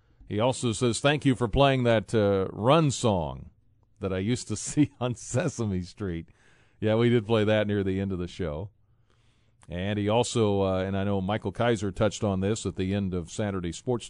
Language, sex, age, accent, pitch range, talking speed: English, male, 40-59, American, 95-115 Hz, 205 wpm